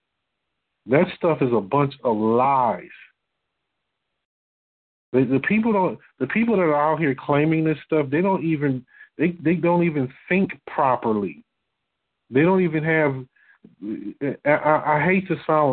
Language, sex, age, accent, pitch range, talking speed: English, male, 40-59, American, 125-165 Hz, 145 wpm